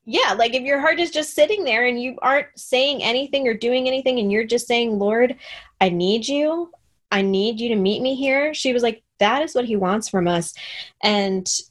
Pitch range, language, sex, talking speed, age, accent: 185-240 Hz, English, female, 220 wpm, 10-29, American